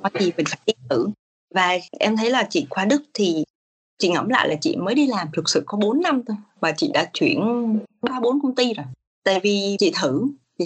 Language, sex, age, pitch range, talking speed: Vietnamese, female, 20-39, 170-235 Hz, 225 wpm